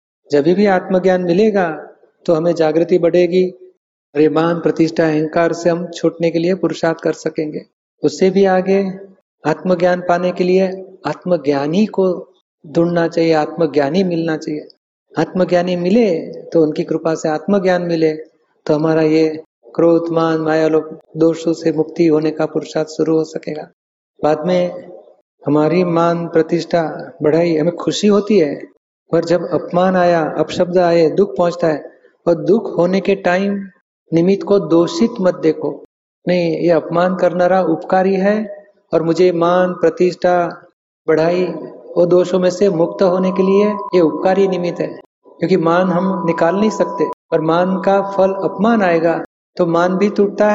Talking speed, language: 150 wpm, Hindi